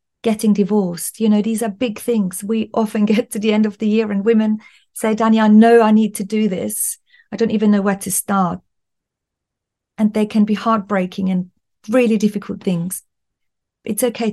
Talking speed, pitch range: 195 wpm, 185-225 Hz